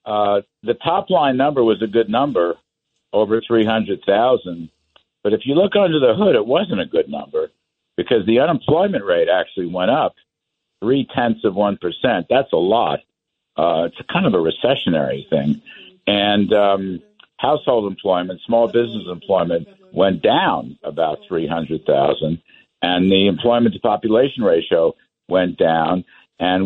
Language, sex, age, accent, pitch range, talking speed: English, male, 60-79, American, 95-120 Hz, 135 wpm